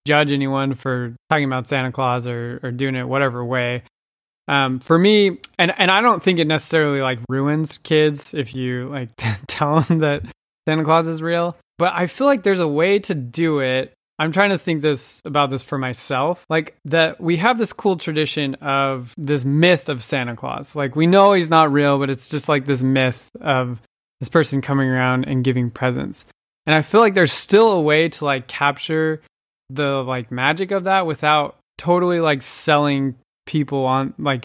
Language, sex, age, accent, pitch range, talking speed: English, male, 20-39, American, 130-160 Hz, 195 wpm